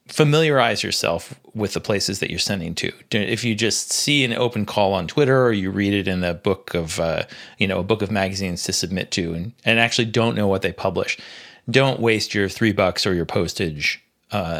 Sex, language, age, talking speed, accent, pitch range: male, English, 30-49, 220 wpm, American, 100-130 Hz